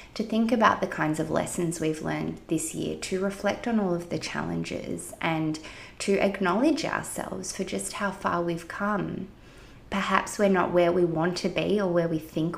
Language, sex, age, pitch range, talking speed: English, female, 20-39, 165-200 Hz, 190 wpm